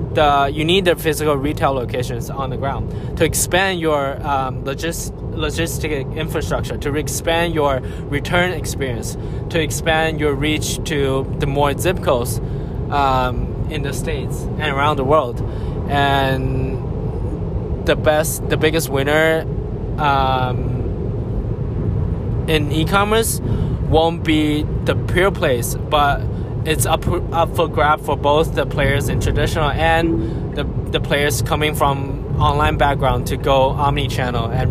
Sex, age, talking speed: male, 20-39, 135 wpm